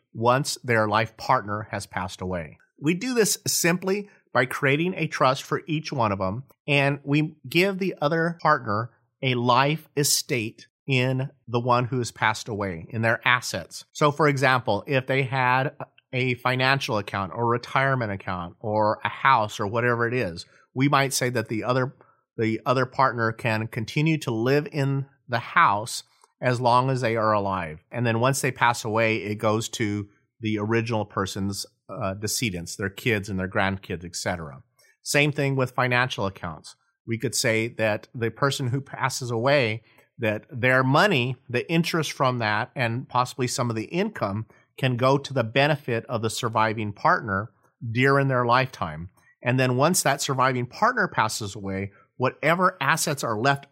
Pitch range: 110-140 Hz